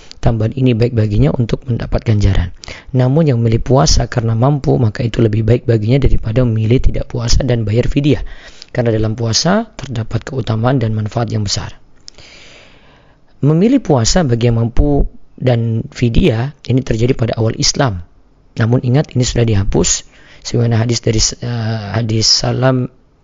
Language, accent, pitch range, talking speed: Indonesian, native, 115-130 Hz, 140 wpm